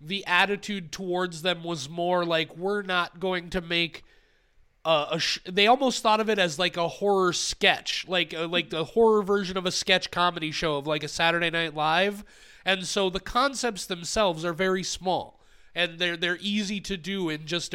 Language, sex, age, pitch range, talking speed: English, male, 30-49, 165-190 Hz, 195 wpm